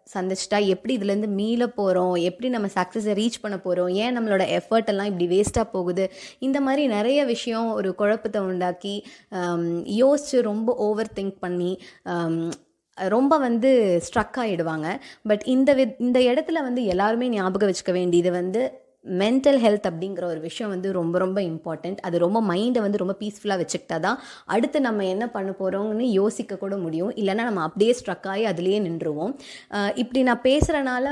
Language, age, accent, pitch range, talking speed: Tamil, 20-39, native, 190-245 Hz, 150 wpm